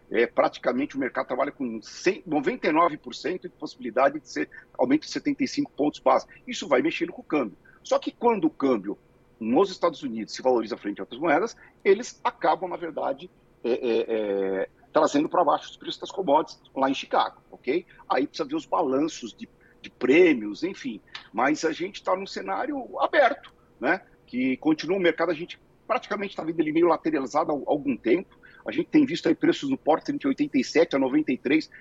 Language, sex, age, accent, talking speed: Portuguese, male, 50-69, Brazilian, 185 wpm